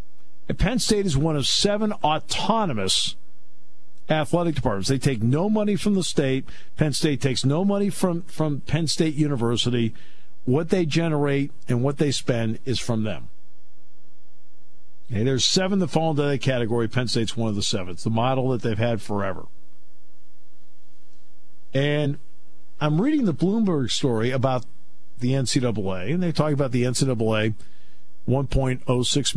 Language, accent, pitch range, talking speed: English, American, 95-145 Hz, 150 wpm